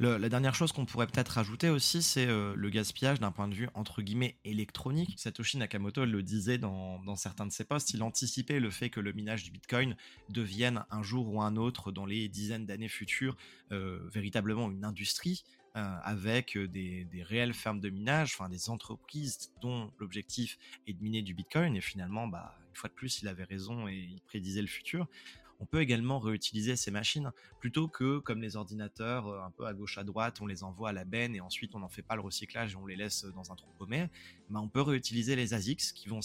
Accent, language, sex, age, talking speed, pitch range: French, French, male, 20-39, 220 wpm, 100-125 Hz